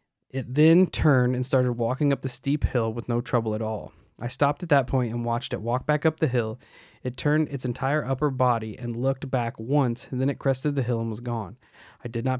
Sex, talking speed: male, 240 wpm